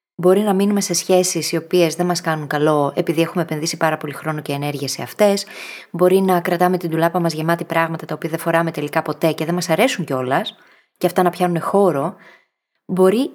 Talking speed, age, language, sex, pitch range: 205 wpm, 20-39, Greek, female, 165-200 Hz